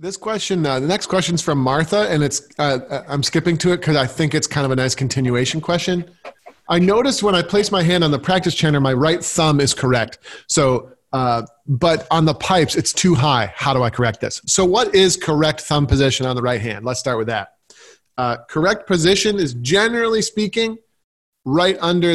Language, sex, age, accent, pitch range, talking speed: English, male, 40-59, American, 140-185 Hz, 210 wpm